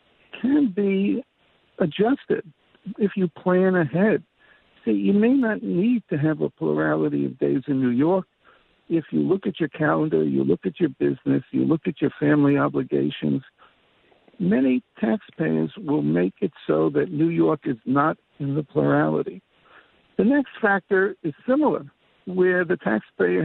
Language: English